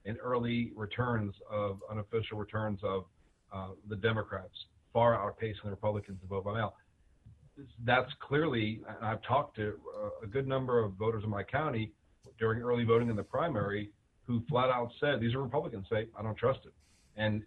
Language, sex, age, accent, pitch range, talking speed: English, male, 40-59, American, 105-130 Hz, 175 wpm